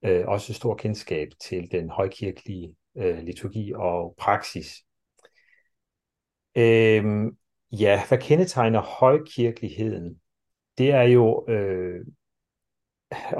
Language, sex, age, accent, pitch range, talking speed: Danish, male, 40-59, native, 95-130 Hz, 90 wpm